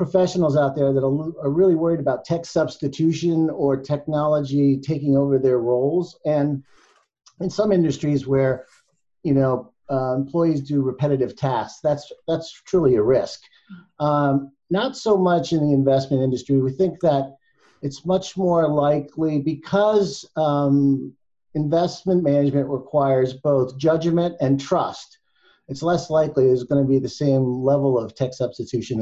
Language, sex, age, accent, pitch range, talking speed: English, male, 50-69, American, 135-165 Hz, 145 wpm